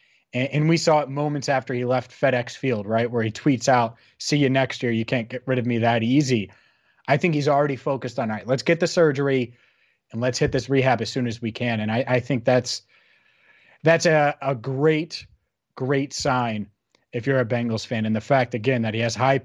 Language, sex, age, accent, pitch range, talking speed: English, male, 30-49, American, 125-160 Hz, 225 wpm